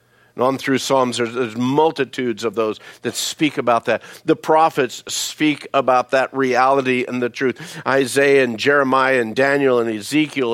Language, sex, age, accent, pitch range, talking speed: English, male, 50-69, American, 110-135 Hz, 160 wpm